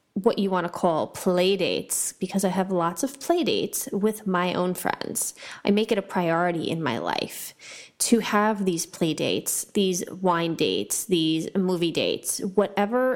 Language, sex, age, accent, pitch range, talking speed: English, female, 30-49, American, 175-225 Hz, 175 wpm